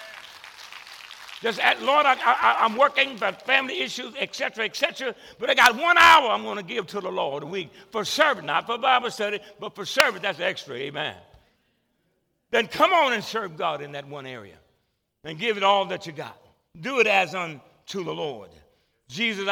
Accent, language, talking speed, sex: American, English, 190 wpm, male